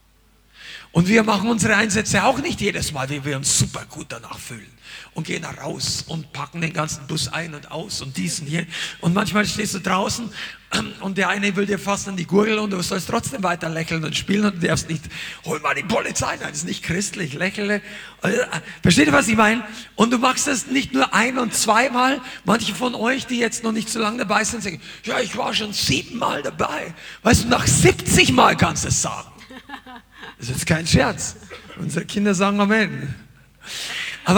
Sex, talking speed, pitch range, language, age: male, 205 wpm, 155-210 Hz, German, 50-69